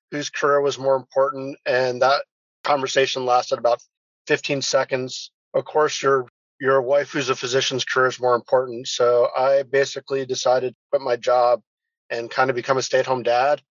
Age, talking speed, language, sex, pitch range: 40-59, 170 wpm, English, male, 125-140 Hz